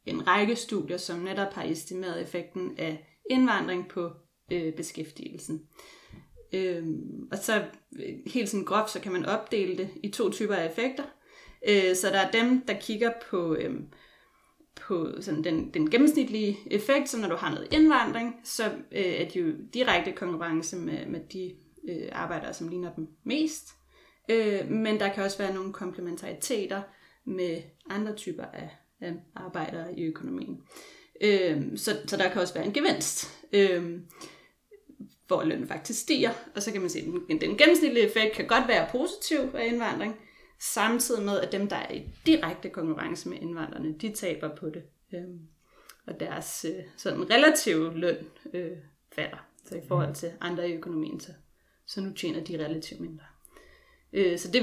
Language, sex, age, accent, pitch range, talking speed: Danish, female, 30-49, native, 170-240 Hz, 165 wpm